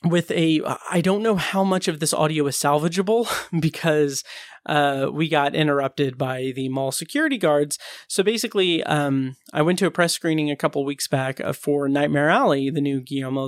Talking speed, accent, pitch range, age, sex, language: 185 wpm, American, 140-175 Hz, 30-49, male, English